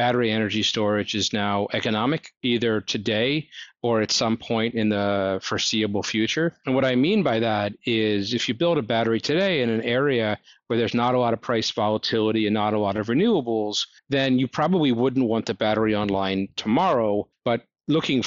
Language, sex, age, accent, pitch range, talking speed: English, male, 40-59, American, 110-130 Hz, 185 wpm